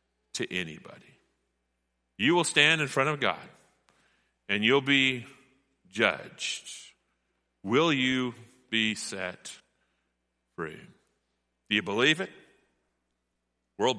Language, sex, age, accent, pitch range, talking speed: English, male, 40-59, American, 90-115 Hz, 100 wpm